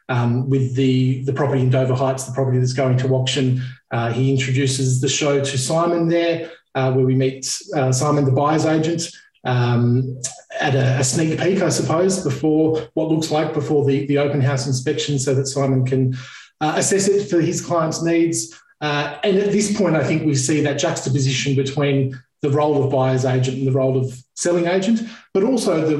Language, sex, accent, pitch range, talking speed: English, male, Australian, 130-155 Hz, 200 wpm